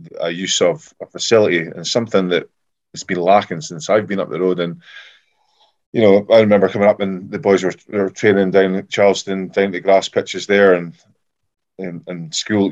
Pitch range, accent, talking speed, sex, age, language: 85-100 Hz, British, 195 wpm, male, 20-39, English